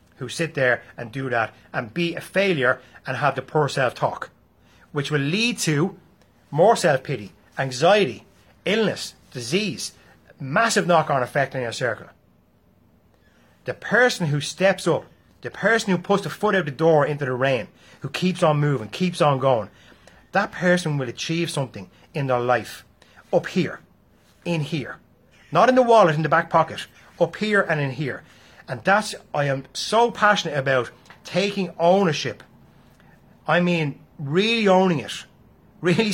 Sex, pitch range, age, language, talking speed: male, 130-180 Hz, 30-49, English, 155 wpm